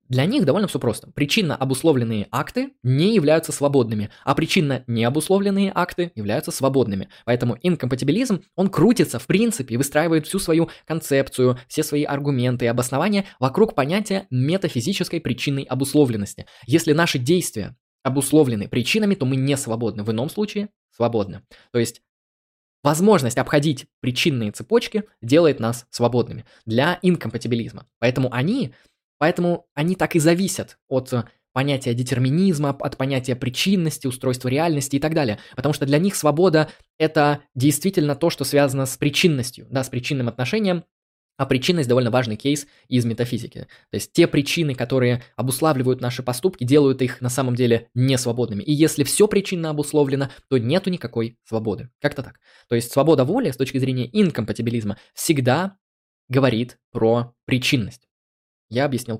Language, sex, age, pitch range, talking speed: Russian, male, 20-39, 125-160 Hz, 140 wpm